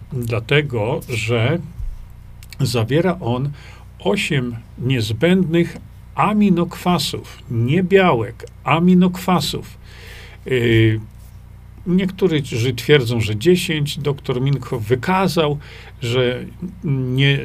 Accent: native